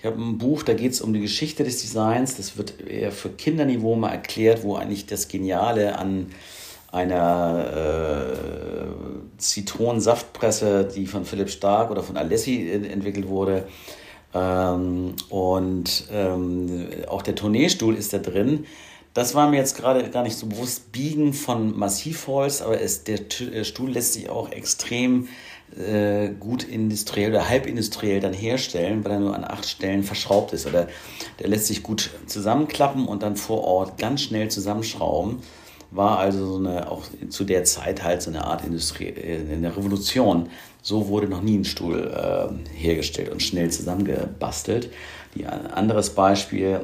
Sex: male